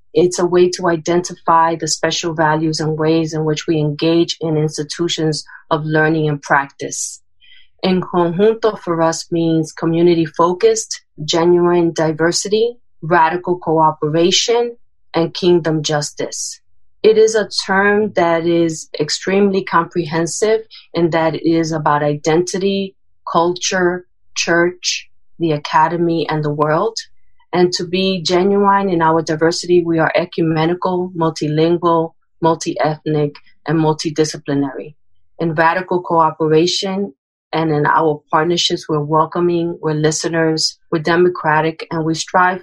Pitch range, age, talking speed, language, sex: 155-180 Hz, 30-49, 120 wpm, English, female